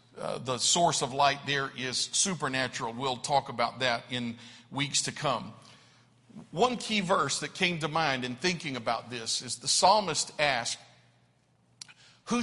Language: English